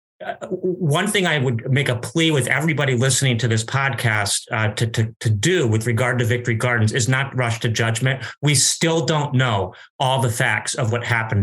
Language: English